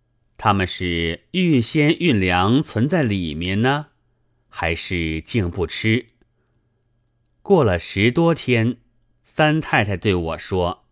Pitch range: 95-135 Hz